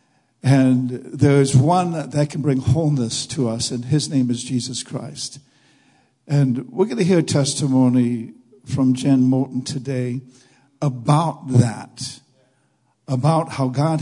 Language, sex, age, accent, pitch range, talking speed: English, male, 60-79, American, 130-150 Hz, 140 wpm